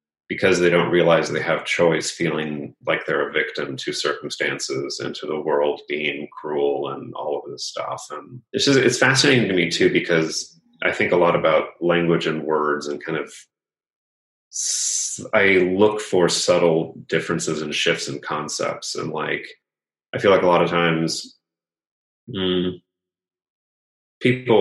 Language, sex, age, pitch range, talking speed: English, male, 30-49, 80-90 Hz, 155 wpm